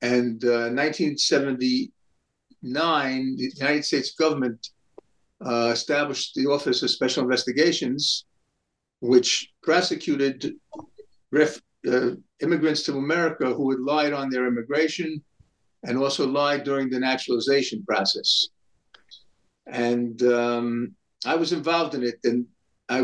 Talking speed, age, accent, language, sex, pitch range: 110 wpm, 50-69, American, English, male, 125-160 Hz